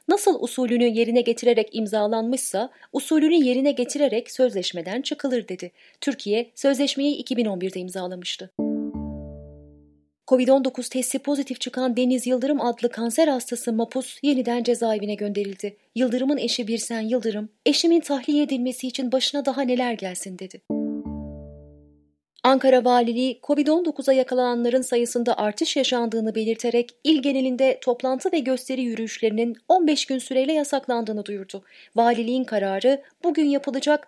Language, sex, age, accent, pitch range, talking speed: Turkish, female, 30-49, native, 205-275 Hz, 115 wpm